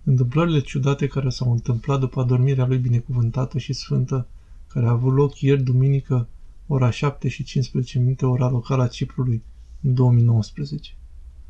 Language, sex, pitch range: Romanian, male, 115-135 Hz